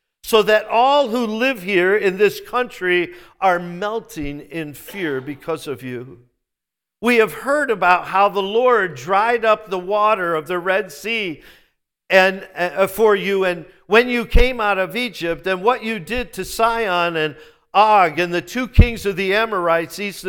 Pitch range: 165-235 Hz